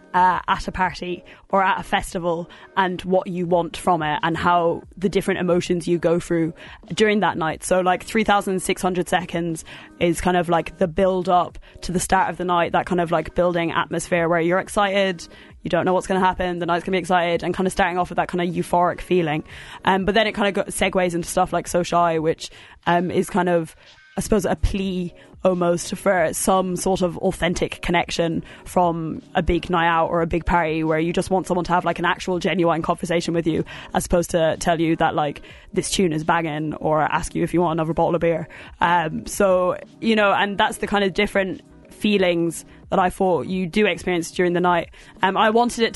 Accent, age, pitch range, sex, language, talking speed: British, 20-39, 170-190 Hz, female, English, 220 wpm